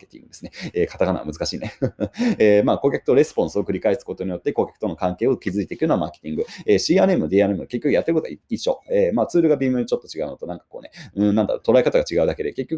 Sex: male